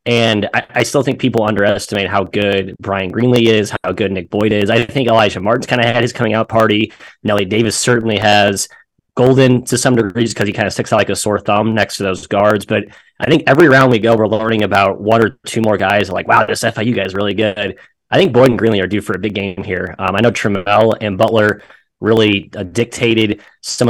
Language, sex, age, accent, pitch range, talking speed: English, male, 20-39, American, 100-115 Hz, 240 wpm